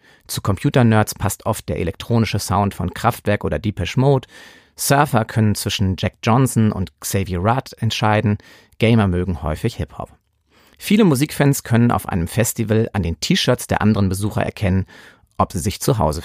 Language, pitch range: German, 95-125 Hz